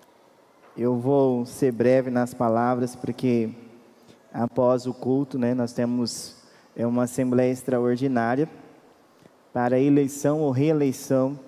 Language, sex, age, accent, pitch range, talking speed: Portuguese, male, 20-39, Brazilian, 115-135 Hz, 105 wpm